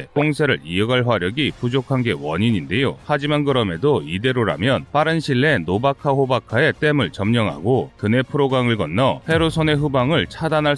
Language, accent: Korean, native